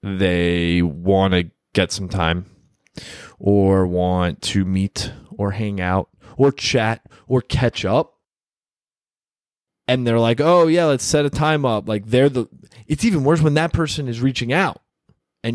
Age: 20-39